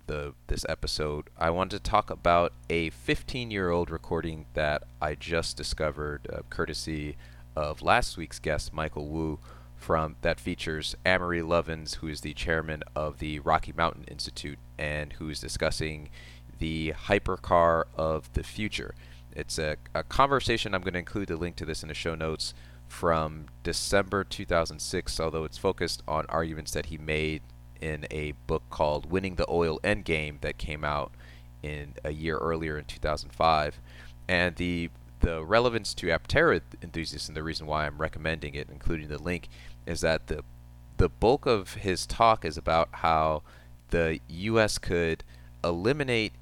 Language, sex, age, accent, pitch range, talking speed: English, male, 30-49, American, 75-85 Hz, 160 wpm